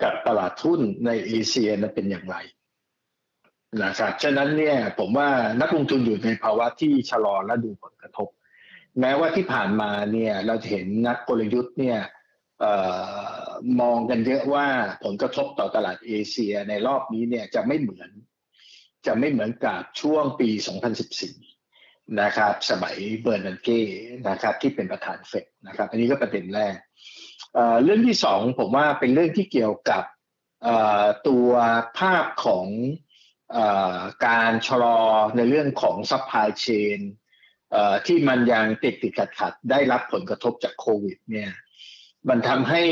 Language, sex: Thai, male